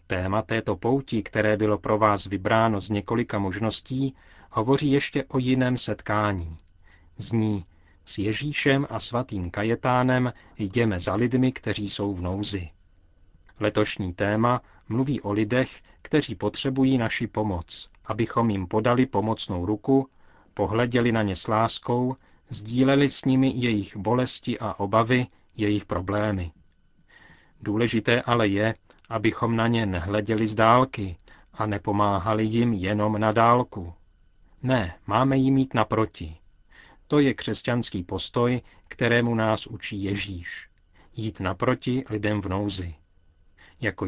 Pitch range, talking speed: 95-120 Hz, 125 wpm